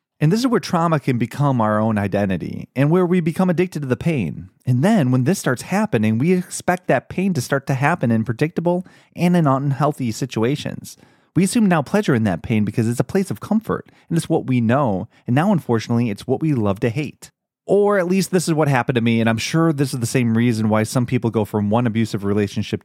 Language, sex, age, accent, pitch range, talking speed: English, male, 30-49, American, 120-165 Hz, 235 wpm